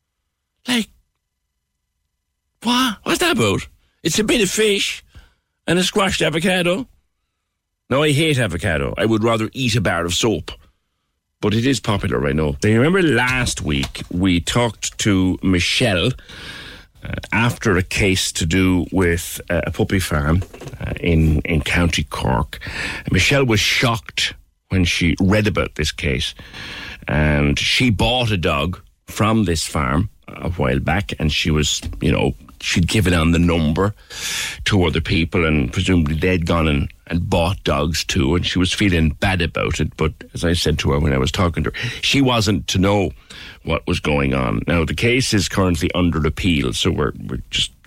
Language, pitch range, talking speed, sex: English, 75-105 Hz, 170 wpm, male